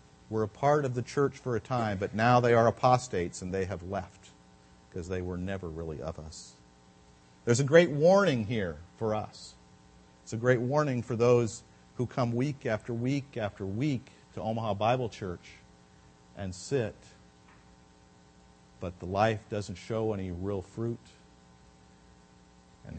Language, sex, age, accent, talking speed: English, male, 50-69, American, 155 wpm